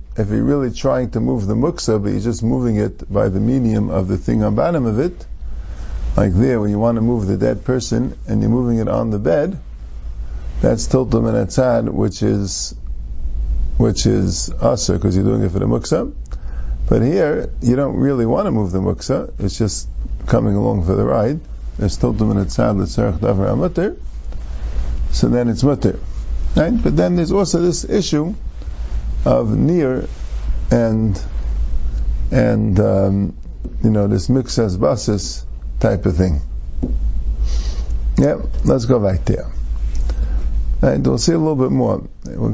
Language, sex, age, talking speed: English, male, 50-69, 170 wpm